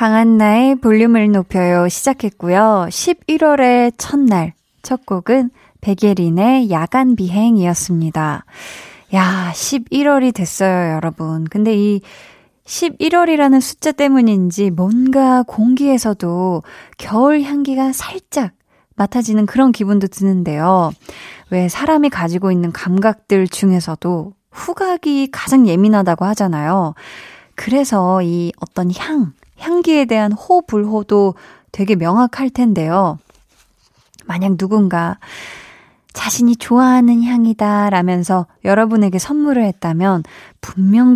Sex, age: female, 20-39